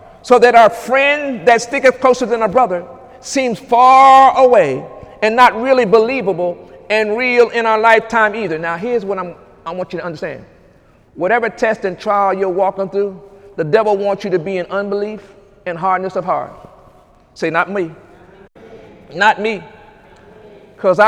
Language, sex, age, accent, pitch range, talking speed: English, male, 50-69, American, 210-275 Hz, 160 wpm